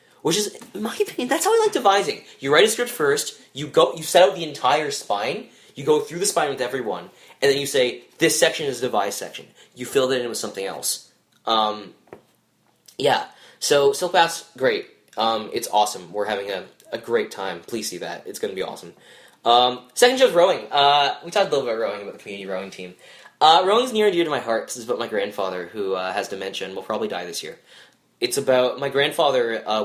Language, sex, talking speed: English, male, 235 wpm